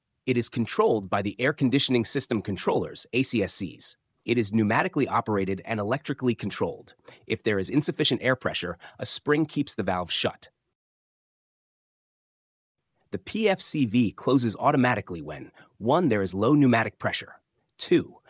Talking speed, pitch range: 135 wpm, 100-135 Hz